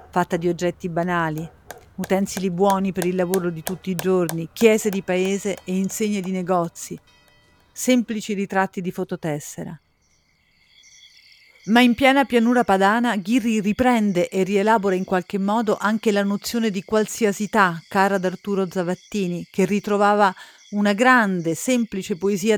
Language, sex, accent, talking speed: Italian, female, native, 140 wpm